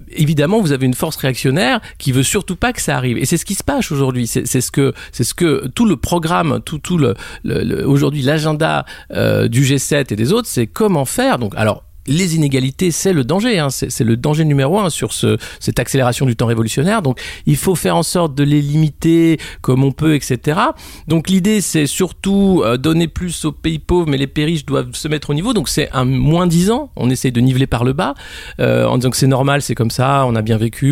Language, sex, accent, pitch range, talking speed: French, male, French, 130-170 Hz, 245 wpm